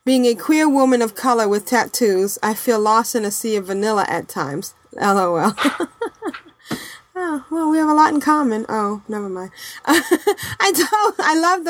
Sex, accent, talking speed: female, American, 175 wpm